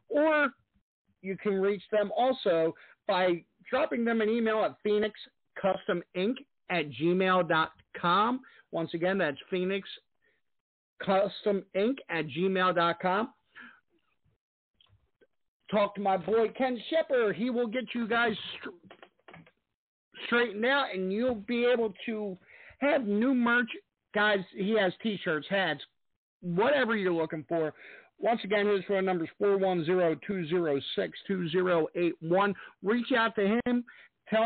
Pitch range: 185-235 Hz